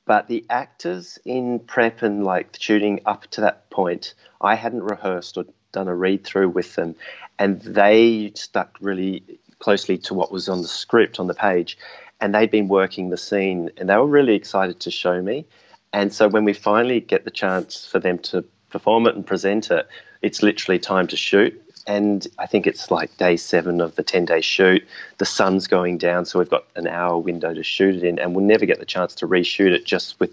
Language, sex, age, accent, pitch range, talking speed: English, male, 30-49, Australian, 90-105 Hz, 210 wpm